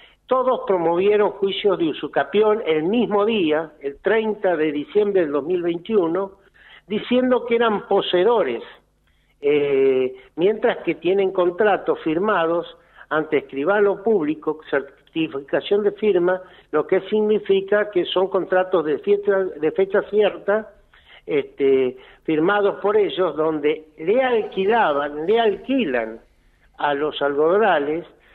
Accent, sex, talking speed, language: Argentinian, male, 110 wpm, Spanish